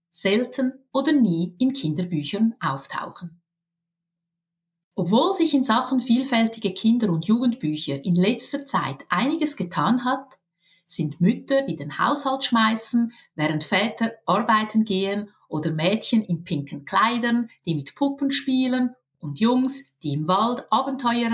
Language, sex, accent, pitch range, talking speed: German, female, Austrian, 165-255 Hz, 125 wpm